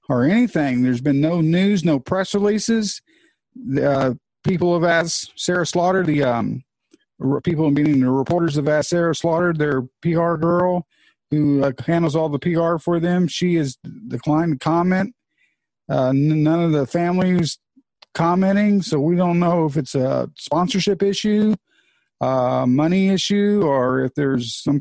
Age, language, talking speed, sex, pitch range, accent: 50-69, English, 155 wpm, male, 140-175 Hz, American